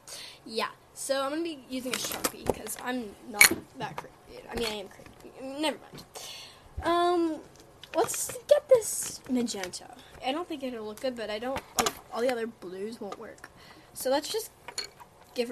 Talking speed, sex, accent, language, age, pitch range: 175 wpm, female, American, English, 10-29, 230-305 Hz